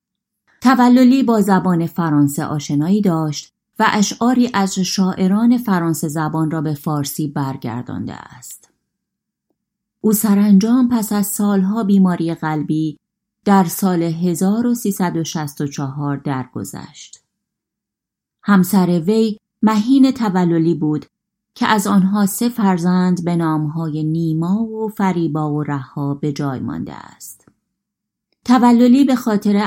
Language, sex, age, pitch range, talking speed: Persian, female, 30-49, 160-205 Hz, 105 wpm